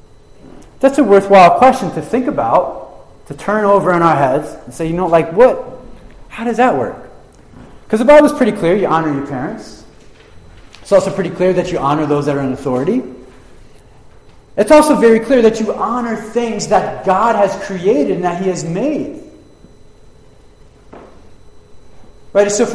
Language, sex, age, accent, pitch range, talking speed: English, male, 30-49, American, 135-220 Hz, 170 wpm